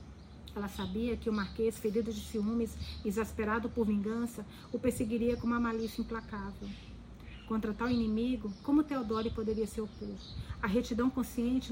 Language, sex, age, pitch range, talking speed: Portuguese, female, 40-59, 215-240 Hz, 145 wpm